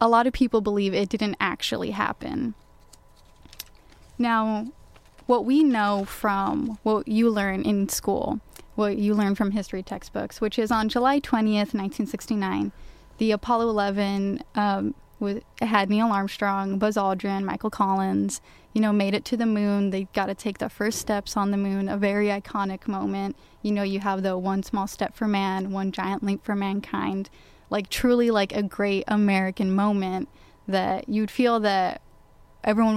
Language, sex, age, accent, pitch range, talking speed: English, female, 10-29, American, 195-220 Hz, 165 wpm